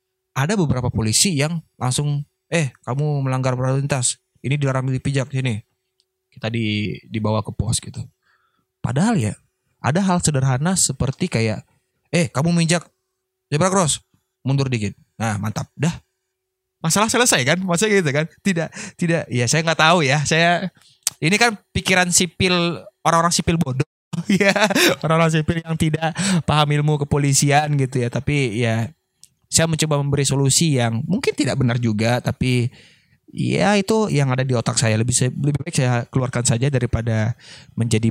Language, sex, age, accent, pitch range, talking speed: Indonesian, male, 20-39, native, 130-190 Hz, 150 wpm